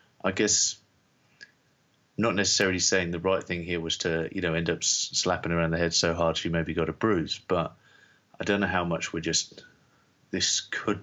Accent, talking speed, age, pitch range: British, 205 wpm, 30-49, 85-95 Hz